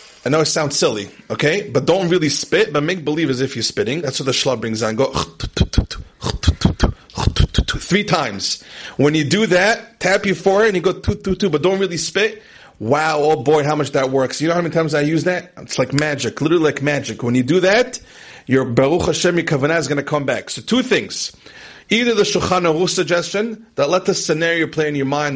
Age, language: 30-49, English